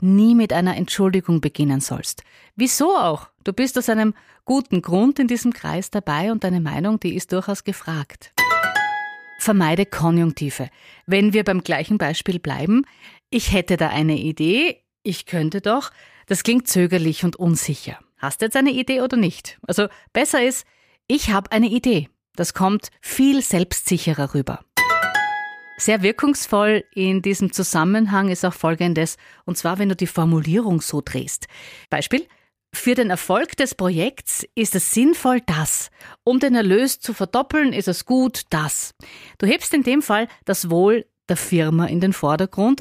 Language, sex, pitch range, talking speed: German, female, 170-245 Hz, 155 wpm